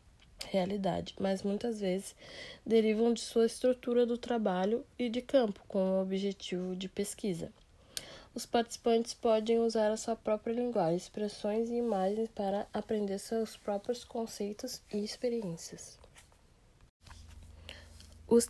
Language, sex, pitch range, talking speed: Portuguese, female, 195-235 Hz, 120 wpm